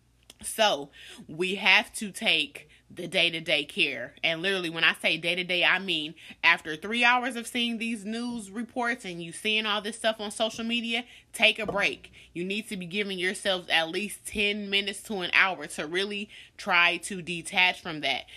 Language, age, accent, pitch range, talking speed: English, 20-39, American, 160-195 Hz, 185 wpm